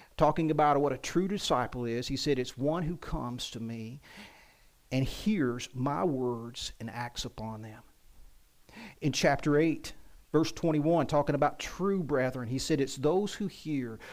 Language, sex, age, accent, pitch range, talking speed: English, male, 40-59, American, 130-170 Hz, 160 wpm